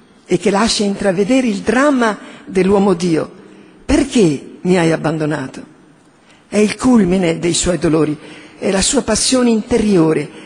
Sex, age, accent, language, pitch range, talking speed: female, 50-69, native, Italian, 200-270 Hz, 130 wpm